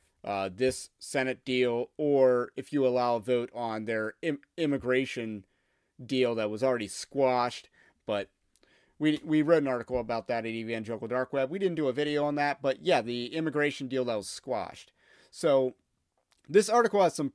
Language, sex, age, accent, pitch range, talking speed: English, male, 30-49, American, 115-145 Hz, 175 wpm